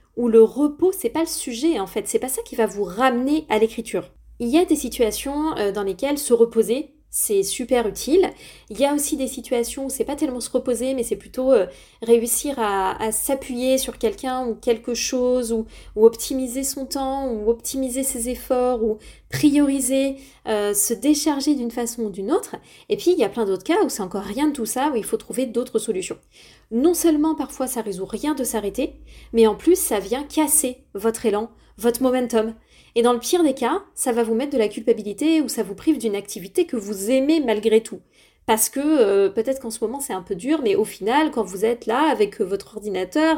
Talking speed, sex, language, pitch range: 220 wpm, female, French, 220-290 Hz